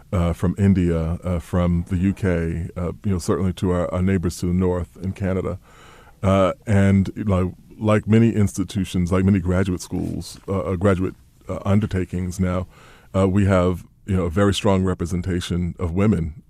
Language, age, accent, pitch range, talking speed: English, 30-49, American, 85-95 Hz, 165 wpm